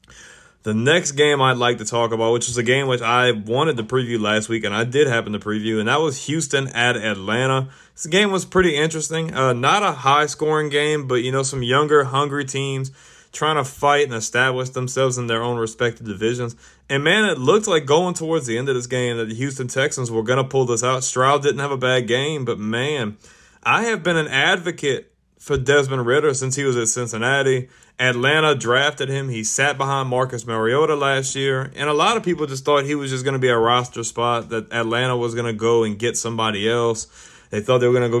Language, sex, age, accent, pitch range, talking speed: English, male, 30-49, American, 120-140 Hz, 230 wpm